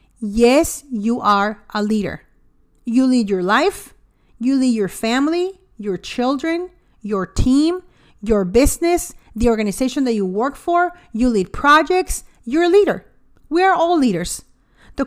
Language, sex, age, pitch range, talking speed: English, female, 40-59, 210-295 Hz, 145 wpm